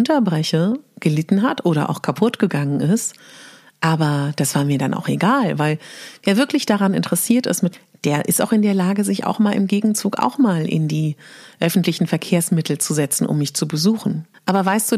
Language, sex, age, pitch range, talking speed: German, female, 40-59, 175-230 Hz, 190 wpm